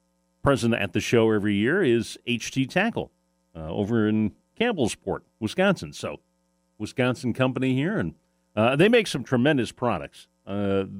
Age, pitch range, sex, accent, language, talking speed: 40-59, 85-125 Hz, male, American, English, 140 wpm